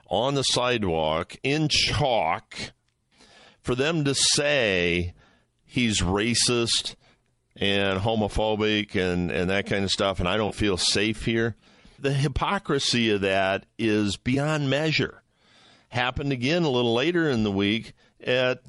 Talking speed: 130 wpm